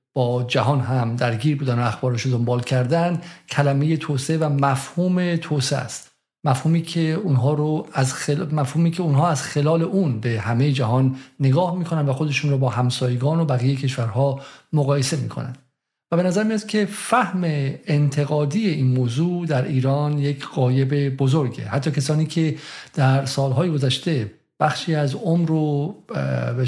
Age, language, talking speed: 50-69, Persian, 150 wpm